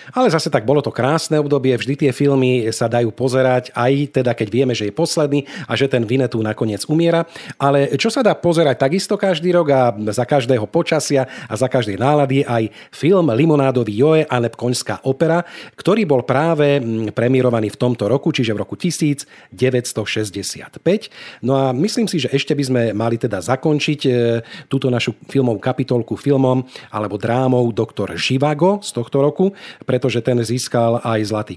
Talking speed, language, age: 170 wpm, Slovak, 40-59